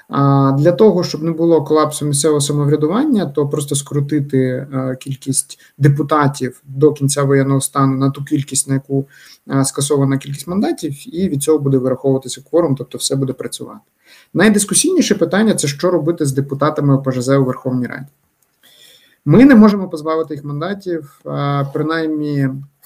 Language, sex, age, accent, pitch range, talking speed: Ukrainian, male, 30-49, native, 135-155 Hz, 140 wpm